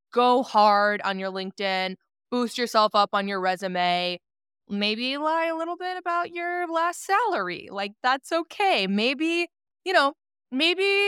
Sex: female